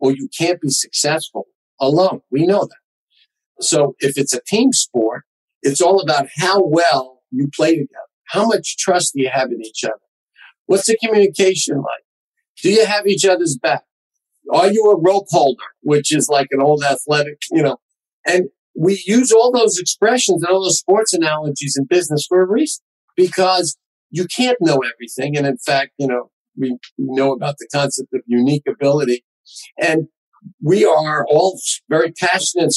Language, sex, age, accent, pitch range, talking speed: English, male, 50-69, American, 140-200 Hz, 175 wpm